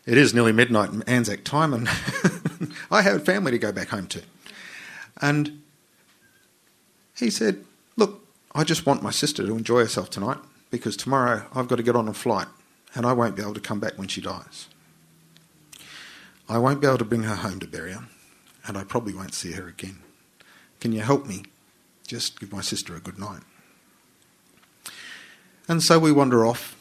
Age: 50-69